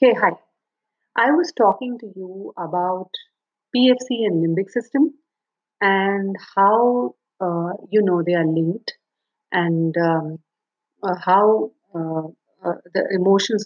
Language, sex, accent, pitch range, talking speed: English, female, Indian, 175-215 Hz, 125 wpm